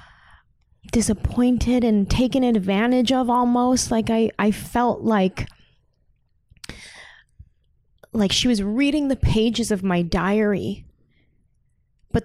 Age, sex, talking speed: 20-39, female, 105 wpm